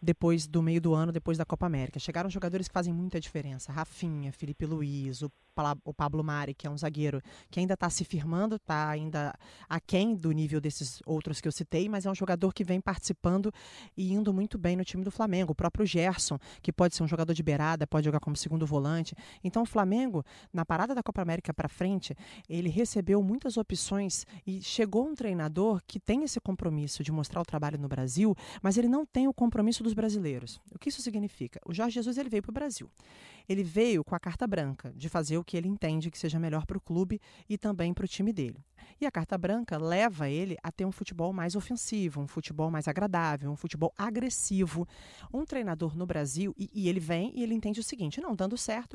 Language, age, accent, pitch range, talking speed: Portuguese, 20-39, Brazilian, 155-205 Hz, 220 wpm